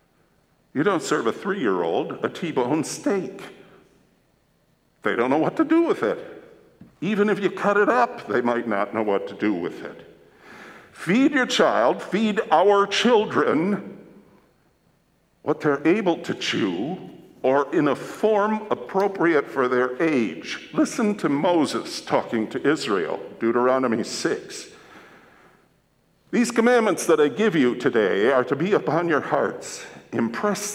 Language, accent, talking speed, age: English, American, 140 wpm, 50-69